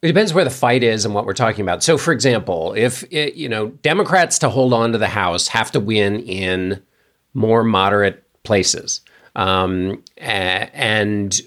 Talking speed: 175 wpm